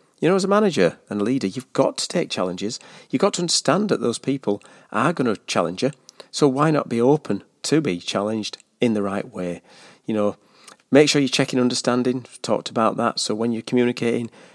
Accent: British